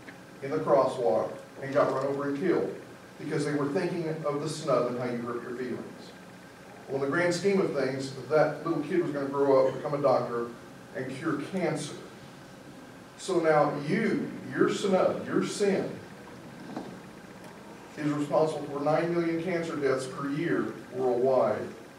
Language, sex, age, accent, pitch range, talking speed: English, male, 40-59, American, 135-165 Hz, 165 wpm